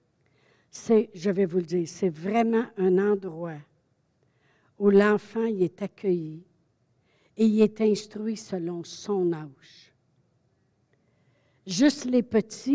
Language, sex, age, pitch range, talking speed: French, female, 60-79, 180-225 Hz, 120 wpm